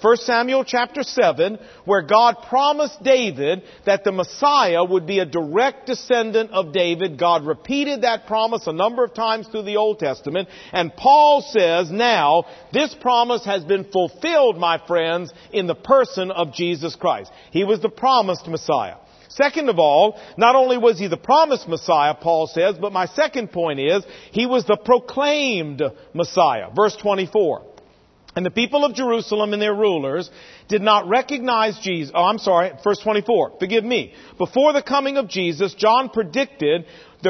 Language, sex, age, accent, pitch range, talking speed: English, male, 50-69, American, 180-250 Hz, 165 wpm